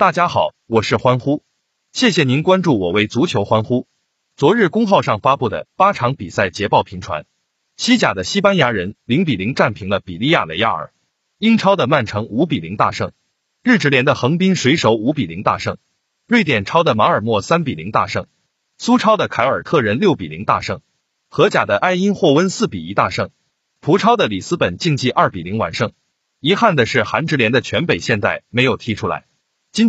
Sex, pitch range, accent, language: male, 130-200 Hz, native, Chinese